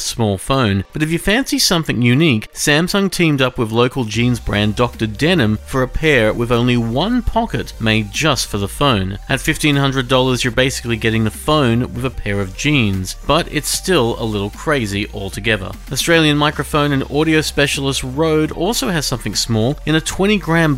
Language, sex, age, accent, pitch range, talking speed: English, male, 40-59, Australian, 110-155 Hz, 180 wpm